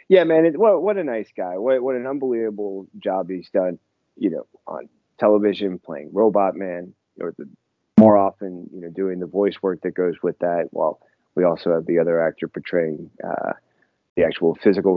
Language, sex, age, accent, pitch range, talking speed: English, male, 30-49, American, 90-105 Hz, 195 wpm